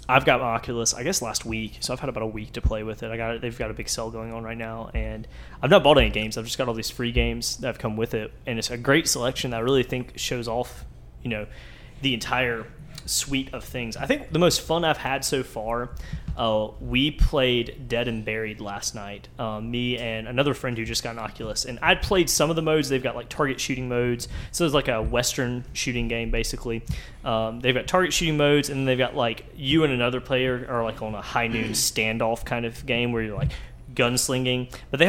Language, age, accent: English, 20-39, American